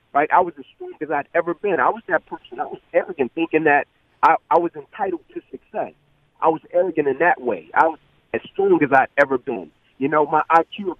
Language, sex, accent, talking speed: English, male, American, 235 wpm